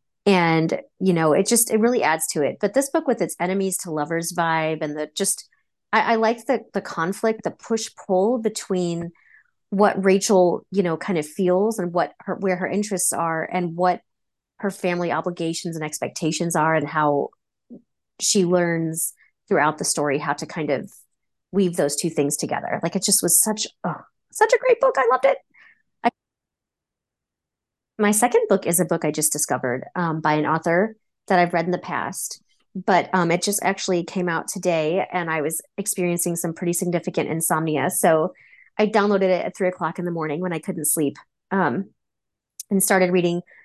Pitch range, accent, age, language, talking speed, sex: 165-205 Hz, American, 30-49, English, 190 wpm, female